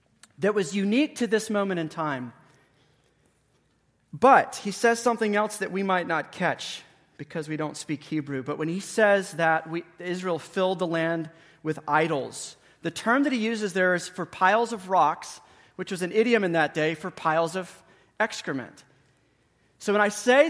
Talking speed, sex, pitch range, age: 175 wpm, male, 150-200 Hz, 30-49